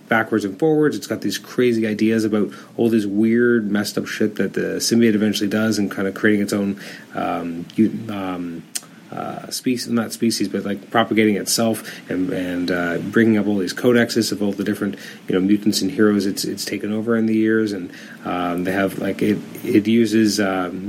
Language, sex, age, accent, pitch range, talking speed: English, male, 30-49, American, 105-125 Hz, 200 wpm